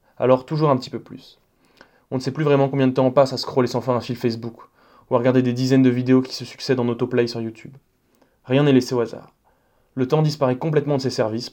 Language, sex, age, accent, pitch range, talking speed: French, male, 20-39, French, 120-135 Hz, 255 wpm